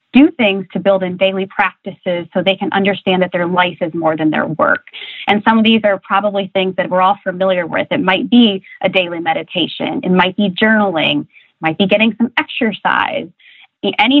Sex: female